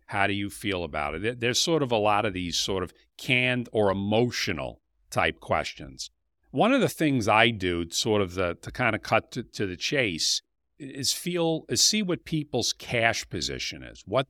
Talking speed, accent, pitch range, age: 190 wpm, American, 90-125 Hz, 50-69